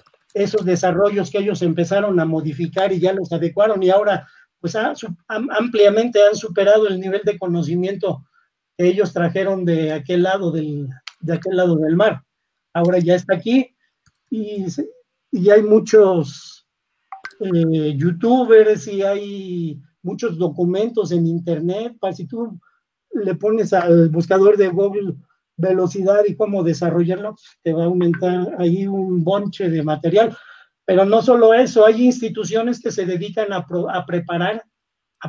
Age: 40-59